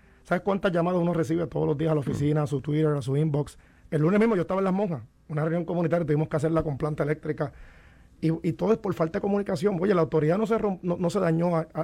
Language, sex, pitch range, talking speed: Spanish, male, 155-195 Hz, 275 wpm